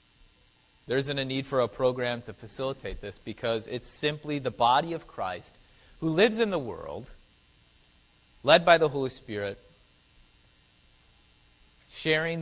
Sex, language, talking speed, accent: male, English, 135 wpm, American